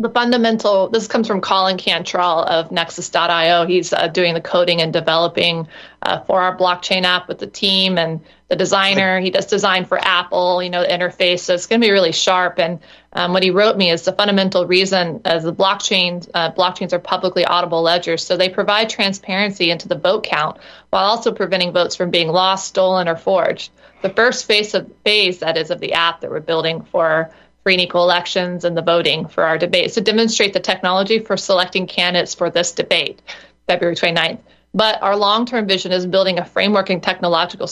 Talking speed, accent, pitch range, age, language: 200 wpm, American, 175-195 Hz, 30-49, English